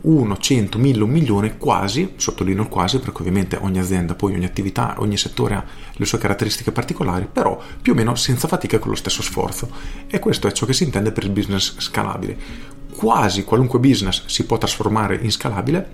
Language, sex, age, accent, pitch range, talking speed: Italian, male, 40-59, native, 100-135 Hz, 200 wpm